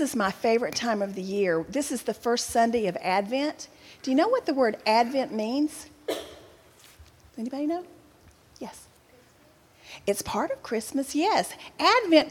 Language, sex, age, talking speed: English, female, 40-59, 150 wpm